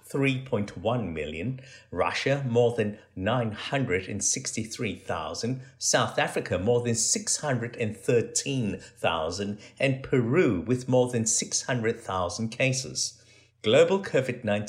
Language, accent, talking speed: English, British, 80 wpm